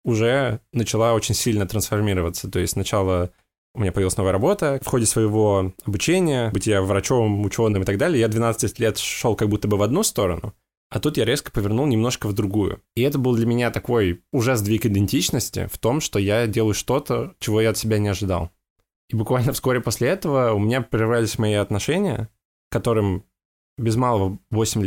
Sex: male